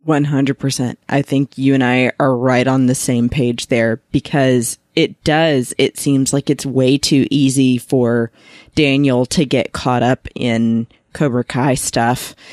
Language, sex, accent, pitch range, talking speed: English, female, American, 125-140 Hz, 155 wpm